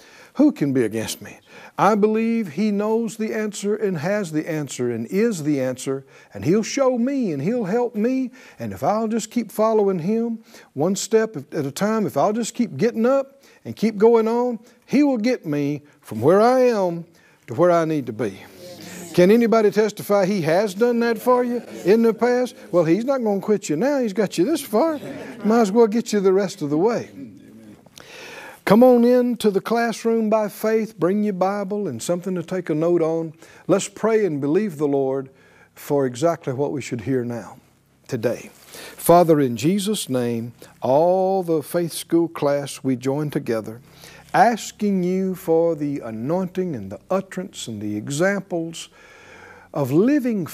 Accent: American